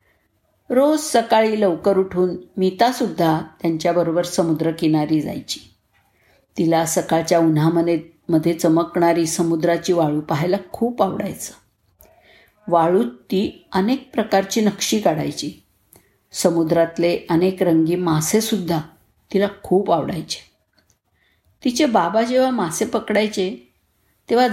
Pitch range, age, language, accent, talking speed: 170-235 Hz, 50-69, Marathi, native, 95 wpm